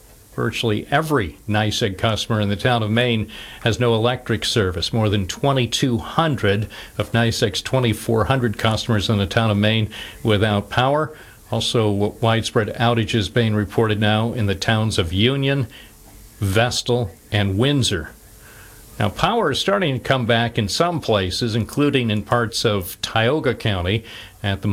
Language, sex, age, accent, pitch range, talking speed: English, male, 50-69, American, 100-120 Hz, 145 wpm